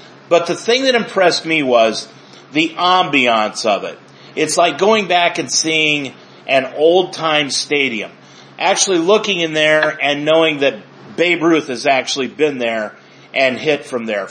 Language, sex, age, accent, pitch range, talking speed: English, male, 40-59, American, 135-175 Hz, 155 wpm